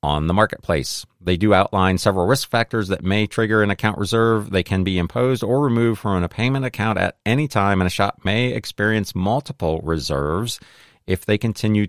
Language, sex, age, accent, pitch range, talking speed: English, male, 40-59, American, 90-110 Hz, 190 wpm